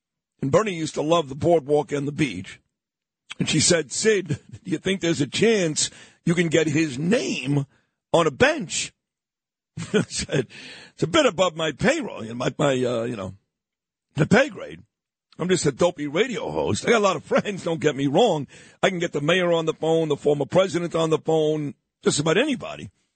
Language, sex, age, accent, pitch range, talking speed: English, male, 50-69, American, 150-180 Hz, 200 wpm